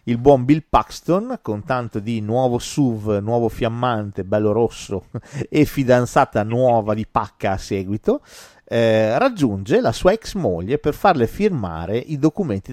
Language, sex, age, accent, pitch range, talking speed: Italian, male, 40-59, native, 100-150 Hz, 145 wpm